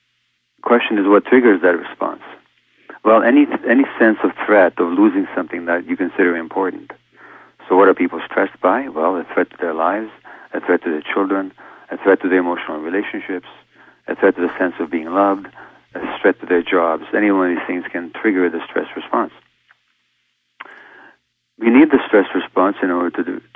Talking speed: 190 wpm